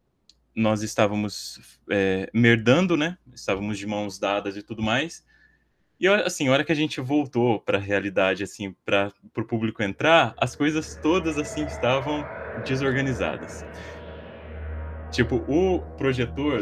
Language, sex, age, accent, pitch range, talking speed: Portuguese, male, 20-39, Brazilian, 110-155 Hz, 135 wpm